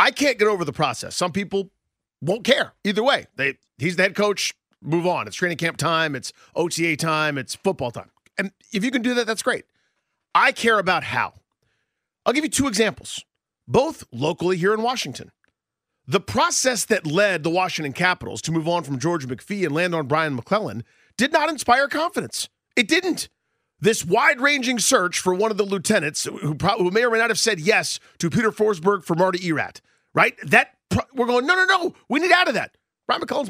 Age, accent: 40-59, American